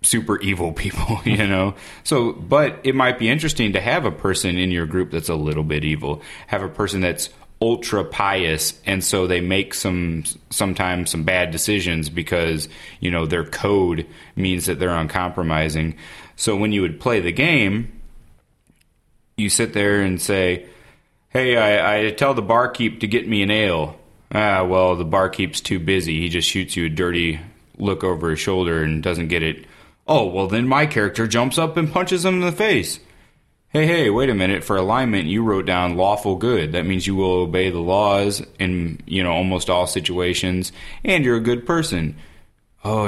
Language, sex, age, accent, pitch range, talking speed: English, male, 30-49, American, 85-110 Hz, 185 wpm